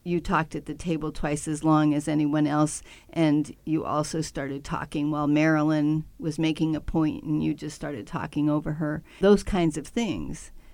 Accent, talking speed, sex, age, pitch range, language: American, 185 wpm, female, 50-69, 155-205 Hz, English